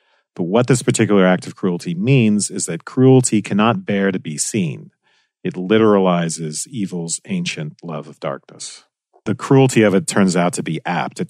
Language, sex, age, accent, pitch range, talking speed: English, male, 40-59, American, 85-125 Hz, 175 wpm